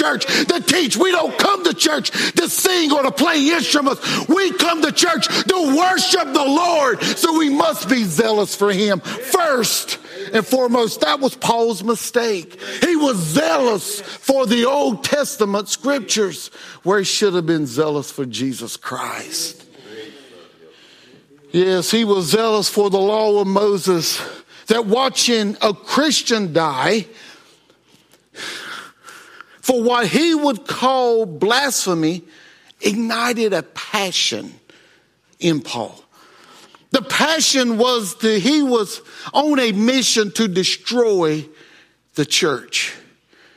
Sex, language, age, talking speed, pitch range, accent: male, English, 50-69, 125 wpm, 170-265 Hz, American